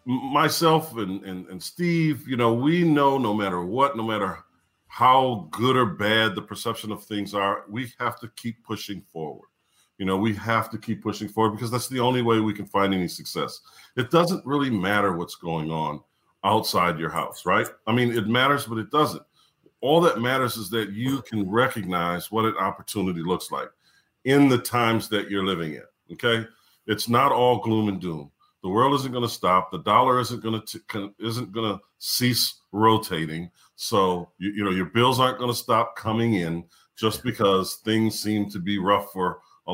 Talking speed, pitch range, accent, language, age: 195 wpm, 100-120 Hz, American, English, 40-59